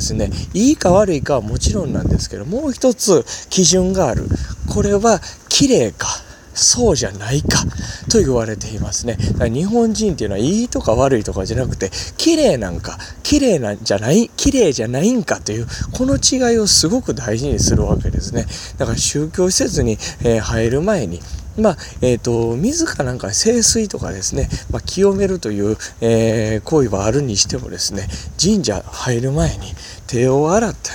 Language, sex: Japanese, male